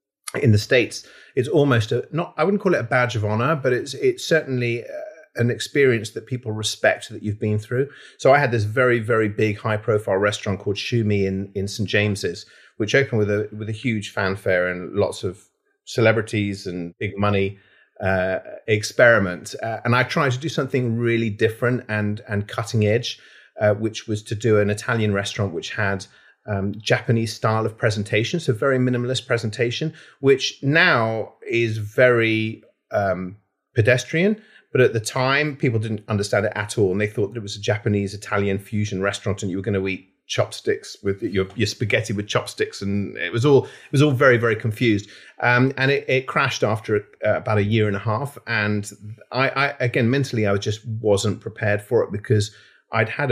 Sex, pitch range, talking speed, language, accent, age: male, 105-125 Hz, 190 wpm, English, British, 30-49